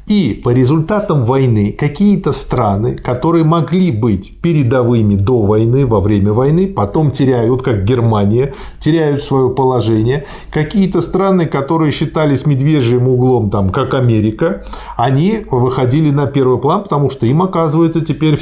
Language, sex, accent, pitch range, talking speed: Russian, male, native, 120-160 Hz, 135 wpm